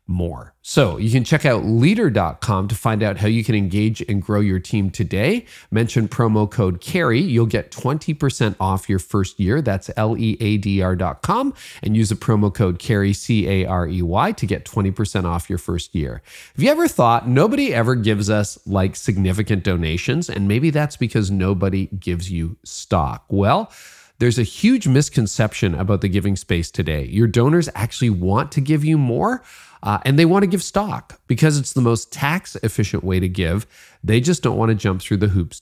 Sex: male